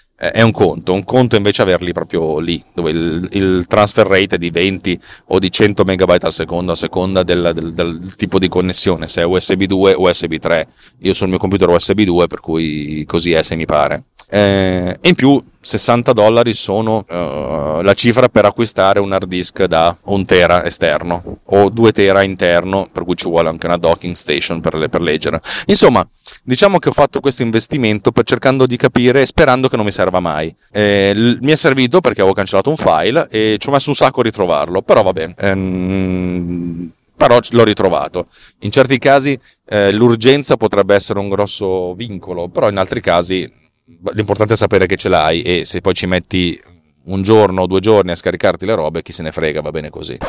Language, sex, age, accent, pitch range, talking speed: Italian, male, 30-49, native, 90-115 Hz, 205 wpm